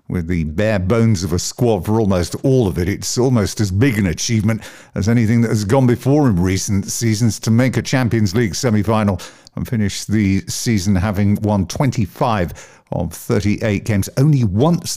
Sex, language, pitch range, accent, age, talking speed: male, English, 95-120 Hz, British, 50-69, 180 wpm